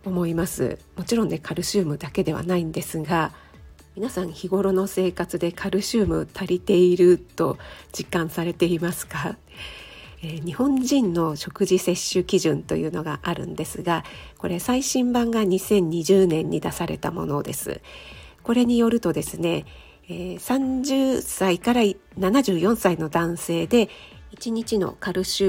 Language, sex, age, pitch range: Japanese, female, 50-69, 165-215 Hz